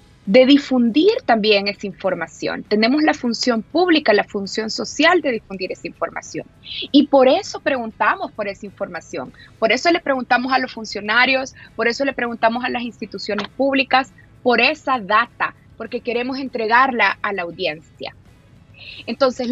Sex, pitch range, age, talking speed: female, 215-275 Hz, 20-39, 150 wpm